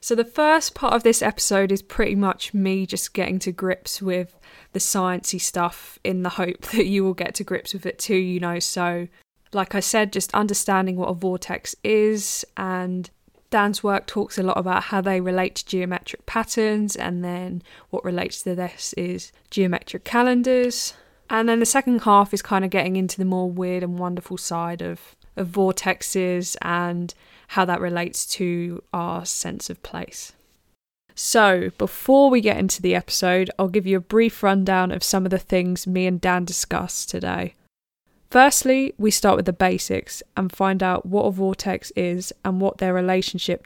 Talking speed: 185 wpm